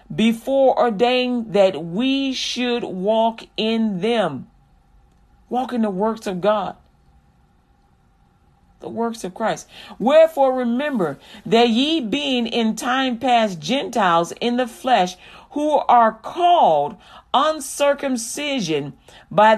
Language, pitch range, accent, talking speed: English, 200-255 Hz, American, 105 wpm